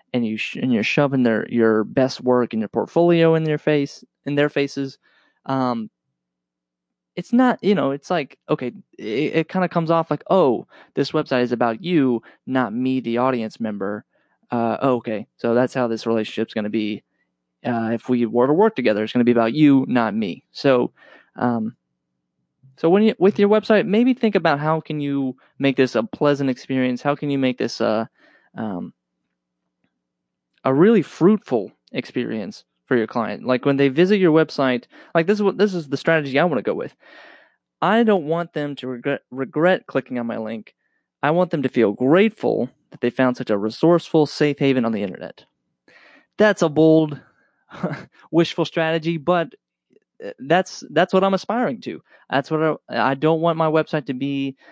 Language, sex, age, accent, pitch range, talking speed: English, male, 20-39, American, 115-165 Hz, 185 wpm